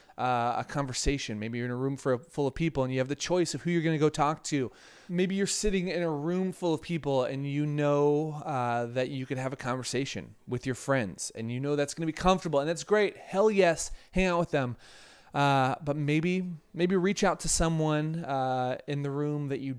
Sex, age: male, 30-49